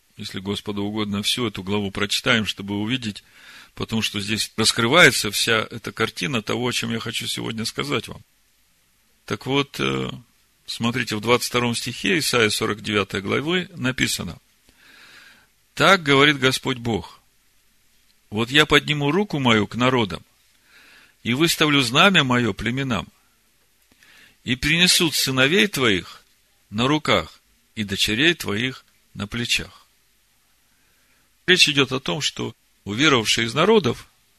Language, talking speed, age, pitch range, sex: Russian, 120 wpm, 40-59, 110-150 Hz, male